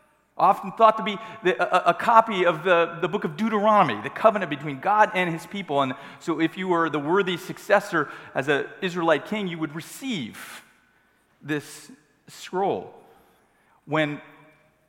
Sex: male